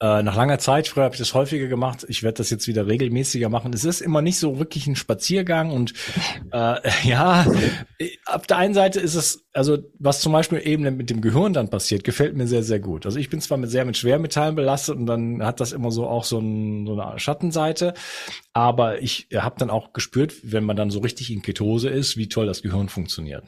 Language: German